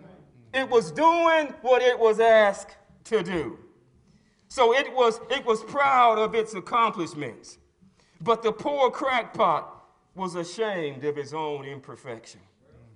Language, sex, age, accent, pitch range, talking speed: English, male, 40-59, American, 155-225 Hz, 130 wpm